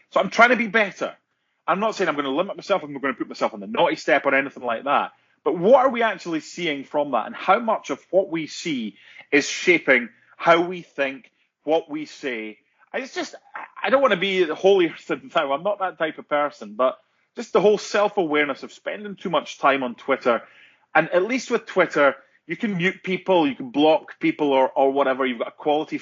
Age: 30-49